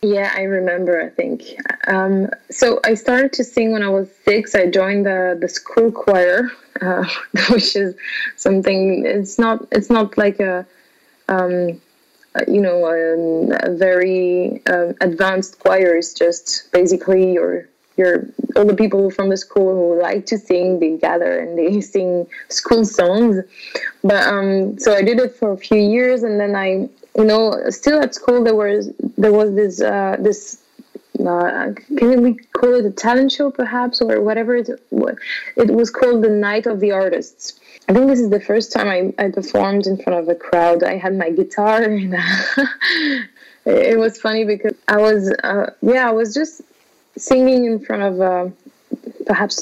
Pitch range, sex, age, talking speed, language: 190-235 Hz, female, 20-39, 180 wpm, English